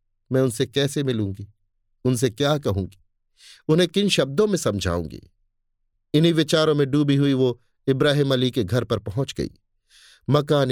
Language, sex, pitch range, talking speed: Hindi, male, 100-145 Hz, 145 wpm